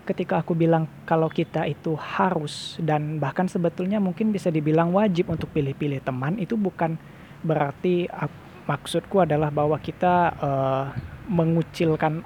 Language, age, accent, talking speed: Indonesian, 20-39, native, 130 wpm